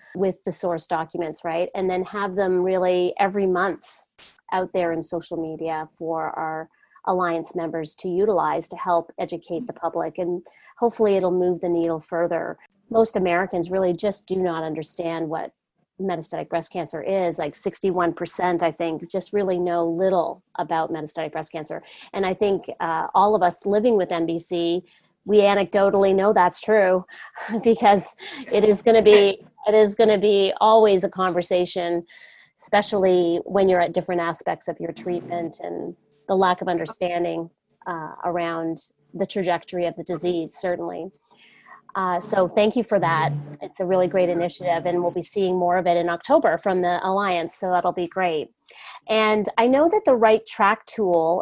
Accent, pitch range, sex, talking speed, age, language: American, 170-200 Hz, female, 170 wpm, 40-59, English